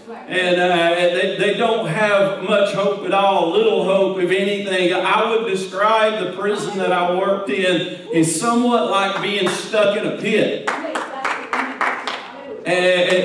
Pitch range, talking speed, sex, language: 170-200 Hz, 150 wpm, male, English